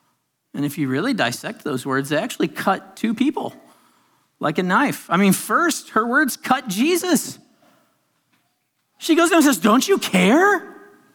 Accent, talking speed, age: American, 155 wpm, 40-59